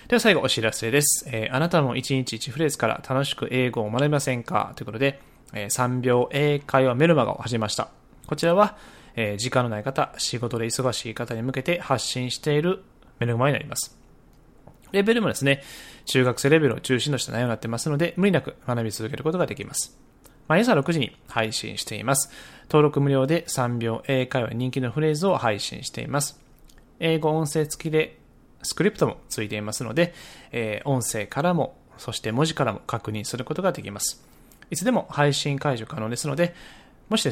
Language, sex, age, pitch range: Japanese, male, 20-39, 115-150 Hz